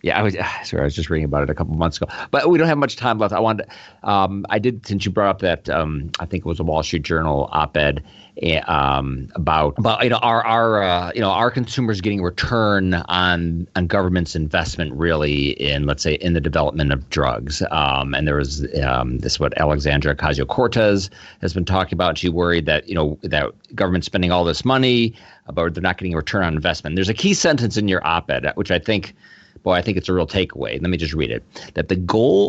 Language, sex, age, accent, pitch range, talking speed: English, male, 40-59, American, 80-105 Hz, 240 wpm